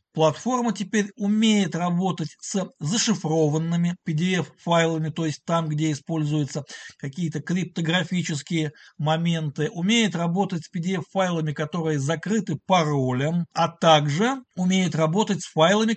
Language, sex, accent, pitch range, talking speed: Russian, male, native, 150-200 Hz, 105 wpm